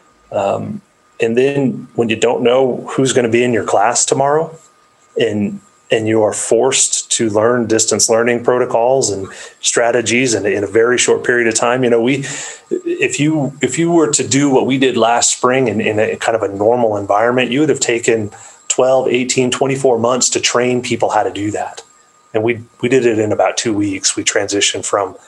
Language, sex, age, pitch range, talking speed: English, male, 30-49, 115-150 Hz, 200 wpm